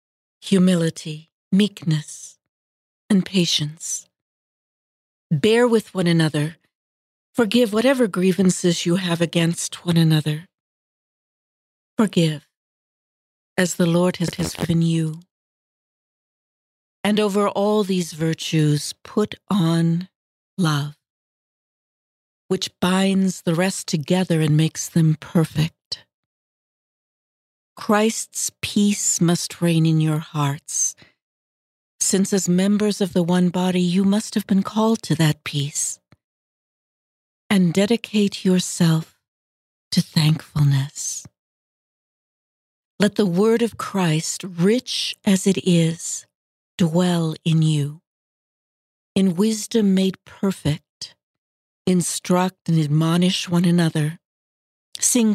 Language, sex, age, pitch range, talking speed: English, female, 50-69, 155-195 Hz, 100 wpm